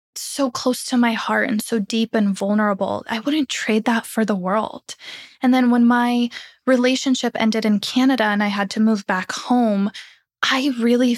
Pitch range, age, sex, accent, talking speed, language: 215-255 Hz, 10-29, female, American, 185 wpm, English